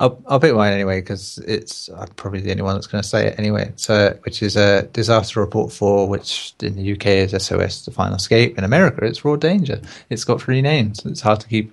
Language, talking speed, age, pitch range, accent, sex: English, 240 wpm, 30-49, 100-120 Hz, British, male